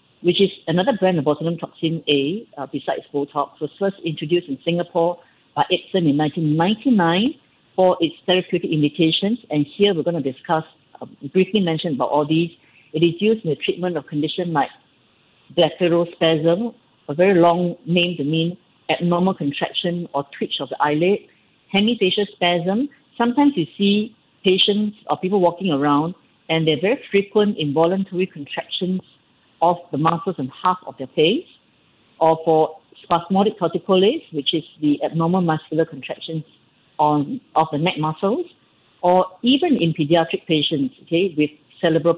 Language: English